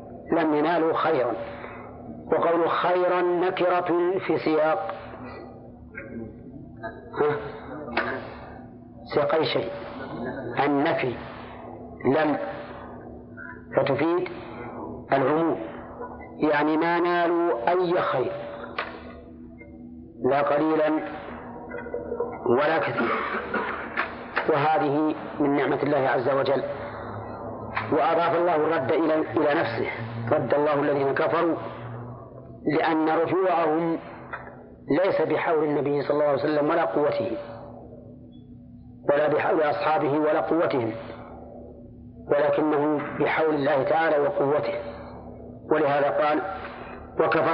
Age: 50-69